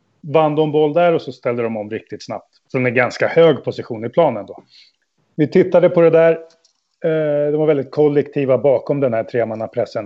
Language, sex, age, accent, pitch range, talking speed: Swedish, male, 30-49, native, 135-165 Hz, 190 wpm